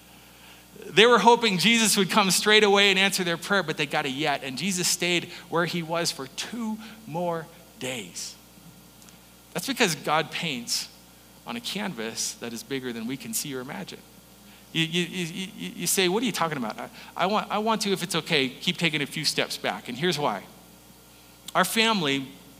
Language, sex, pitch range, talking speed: English, male, 120-165 Hz, 190 wpm